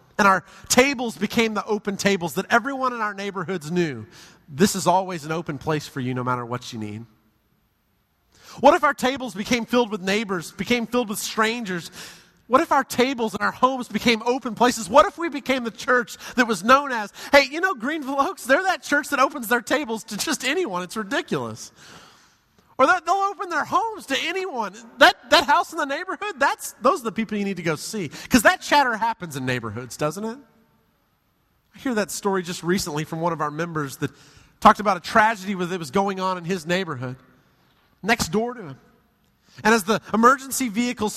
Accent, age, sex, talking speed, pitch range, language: American, 30-49, male, 200 wpm, 180-245 Hz, English